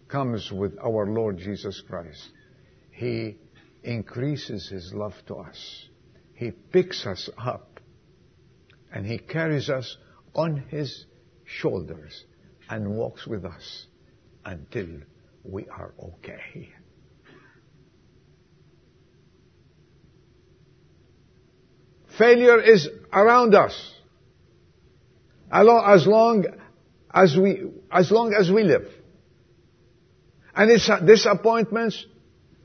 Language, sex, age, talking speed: English, male, 60-79, 85 wpm